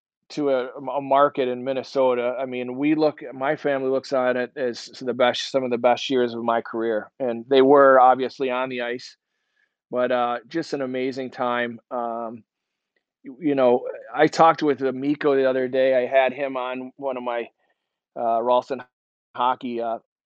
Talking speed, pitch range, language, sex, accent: 185 wpm, 125-145 Hz, English, male, American